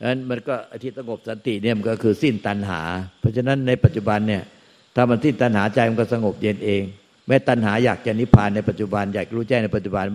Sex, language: male, Thai